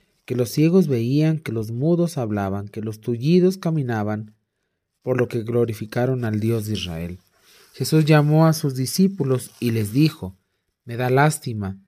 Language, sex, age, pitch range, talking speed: Spanish, male, 40-59, 105-155 Hz, 155 wpm